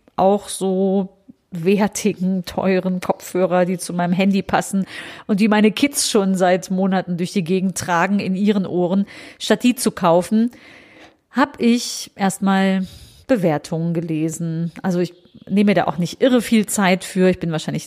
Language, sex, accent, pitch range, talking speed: German, female, German, 175-215 Hz, 155 wpm